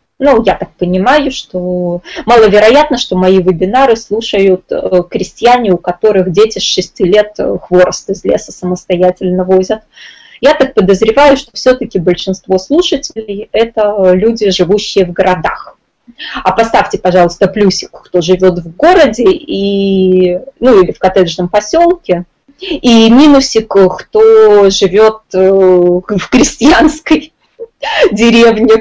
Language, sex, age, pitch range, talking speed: Russian, female, 20-39, 185-255 Hz, 115 wpm